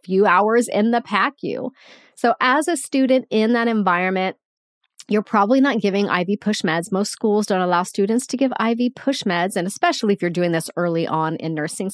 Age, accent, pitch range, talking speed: 30-49, American, 190-240 Hz, 200 wpm